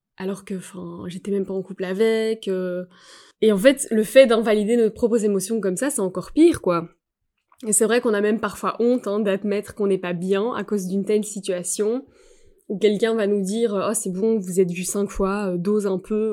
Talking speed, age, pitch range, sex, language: 225 wpm, 20-39, 195-230 Hz, female, French